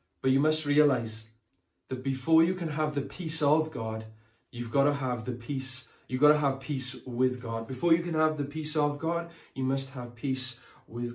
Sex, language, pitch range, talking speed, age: male, English, 125-155 Hz, 210 wpm, 20-39